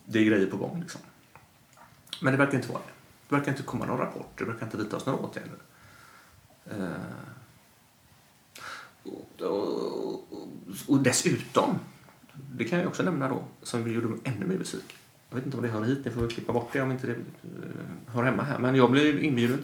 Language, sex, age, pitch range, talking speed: Swedish, male, 30-49, 105-145 Hz, 200 wpm